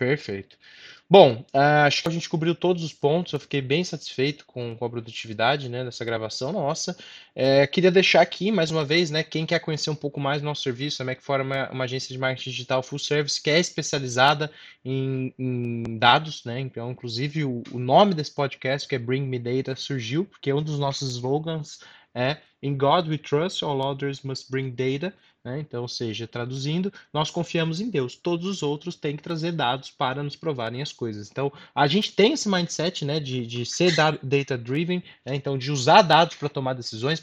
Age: 20-39